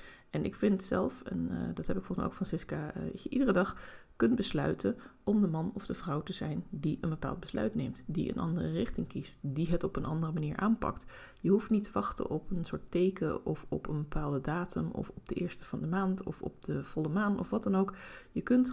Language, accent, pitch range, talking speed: Dutch, Dutch, 140-190 Hz, 245 wpm